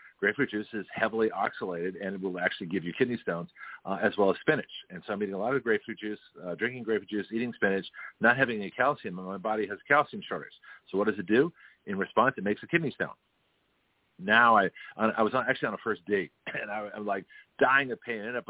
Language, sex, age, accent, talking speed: English, male, 50-69, American, 240 wpm